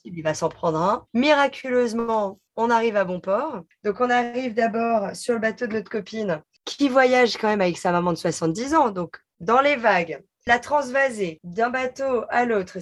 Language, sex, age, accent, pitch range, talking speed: French, female, 20-39, French, 180-240 Hz, 190 wpm